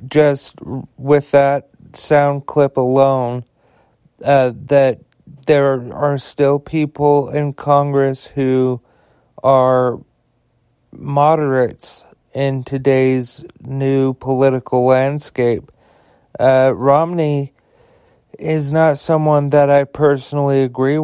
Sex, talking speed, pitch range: male, 90 wpm, 130-145 Hz